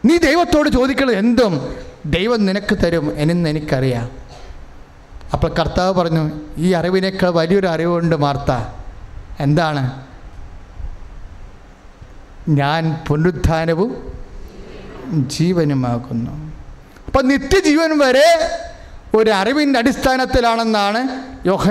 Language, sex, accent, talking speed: English, male, Indian, 75 wpm